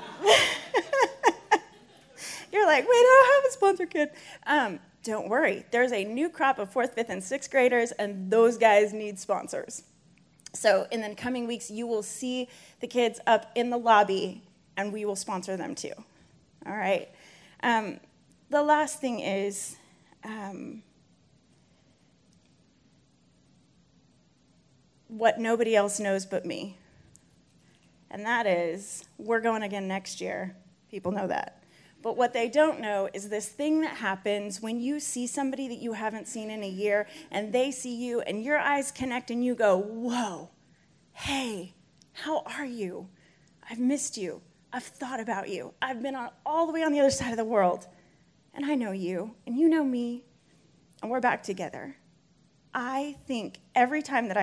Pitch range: 205-275 Hz